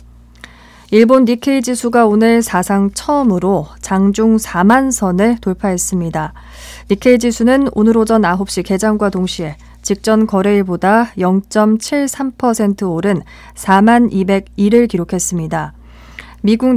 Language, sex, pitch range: Korean, female, 180-235 Hz